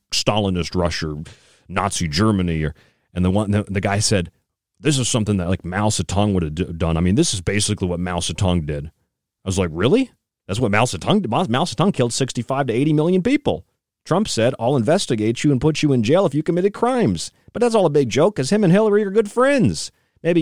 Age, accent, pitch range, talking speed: 40-59, American, 90-140 Hz, 230 wpm